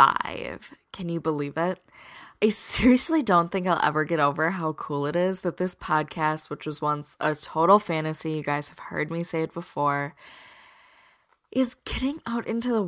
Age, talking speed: 10-29, 175 wpm